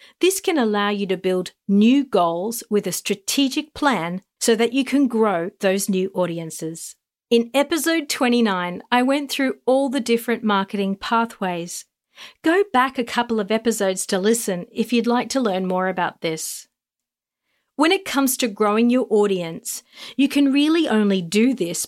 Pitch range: 190-255 Hz